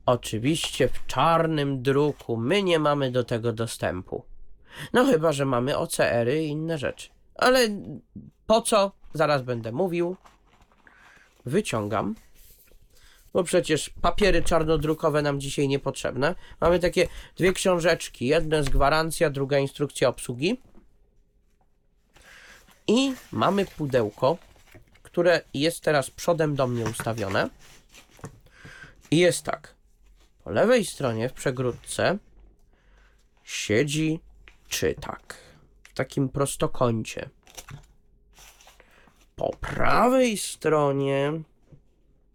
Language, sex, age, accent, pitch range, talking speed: Polish, male, 20-39, native, 130-170 Hz, 95 wpm